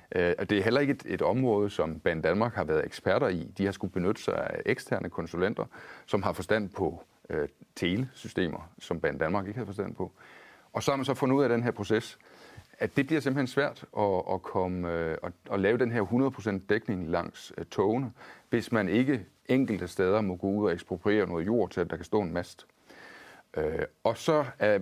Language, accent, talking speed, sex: Danish, native, 215 wpm, male